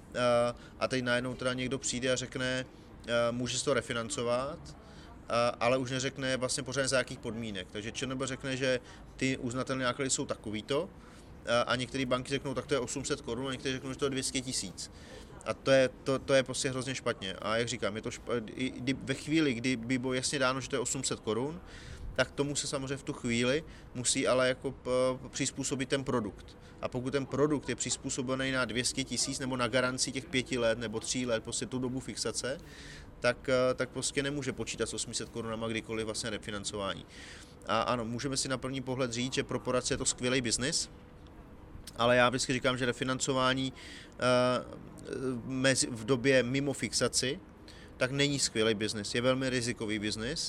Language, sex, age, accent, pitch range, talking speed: Czech, male, 30-49, native, 115-130 Hz, 185 wpm